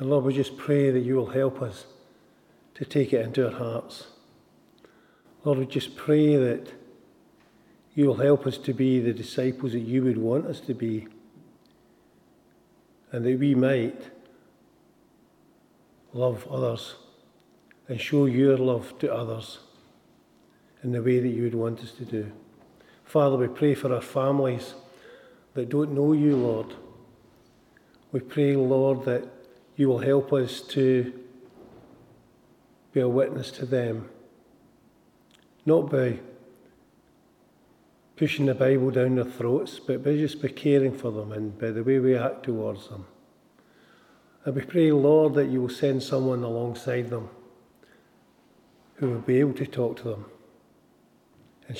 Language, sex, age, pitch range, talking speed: English, male, 50-69, 120-135 Hz, 145 wpm